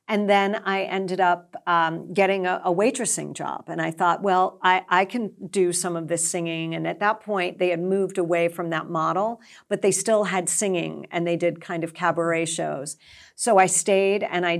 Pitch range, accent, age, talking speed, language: 170-200 Hz, American, 50-69, 210 wpm, English